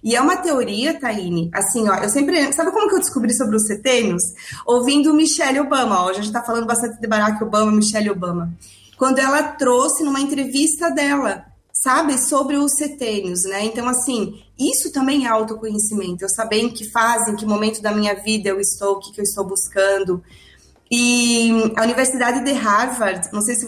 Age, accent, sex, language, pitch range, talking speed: 20-39, Brazilian, female, Portuguese, 215-285 Hz, 185 wpm